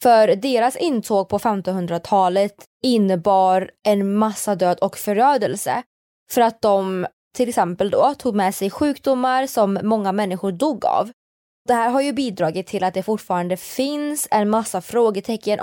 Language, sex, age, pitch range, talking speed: Swedish, female, 20-39, 190-245 Hz, 150 wpm